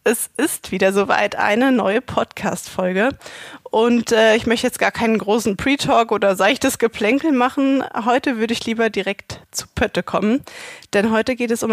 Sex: female